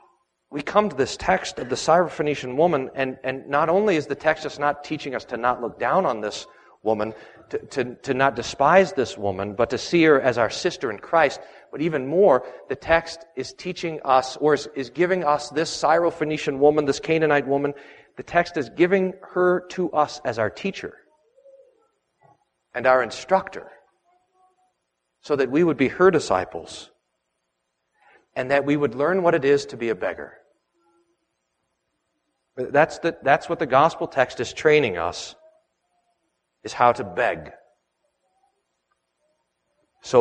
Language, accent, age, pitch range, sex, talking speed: English, American, 40-59, 125-170 Hz, male, 160 wpm